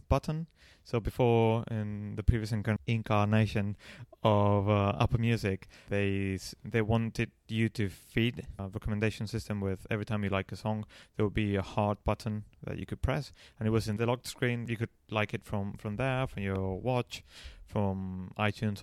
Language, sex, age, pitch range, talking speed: English, male, 30-49, 100-115 Hz, 180 wpm